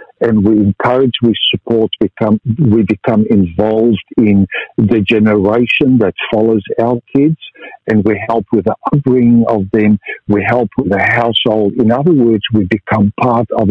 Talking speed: 155 wpm